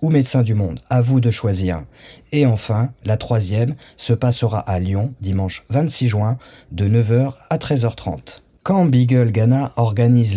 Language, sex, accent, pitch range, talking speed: French, male, French, 105-130 Hz, 155 wpm